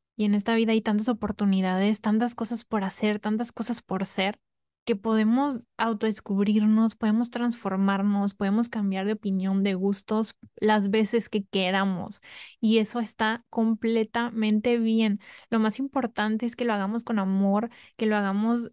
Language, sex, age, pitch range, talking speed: Spanish, female, 20-39, 195-225 Hz, 150 wpm